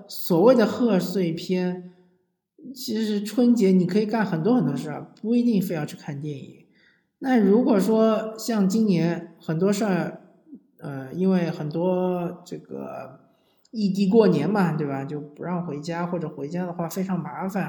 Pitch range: 160-205 Hz